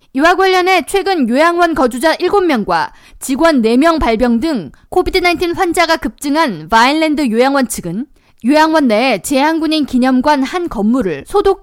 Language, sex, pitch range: Korean, female, 245-330 Hz